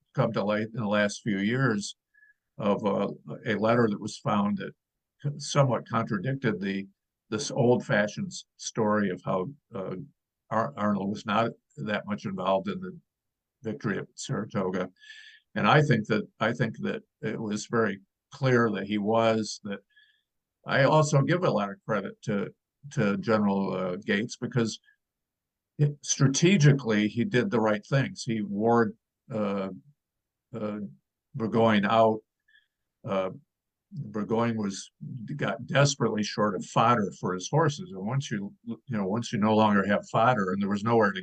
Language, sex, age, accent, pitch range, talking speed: English, male, 50-69, American, 105-150 Hz, 155 wpm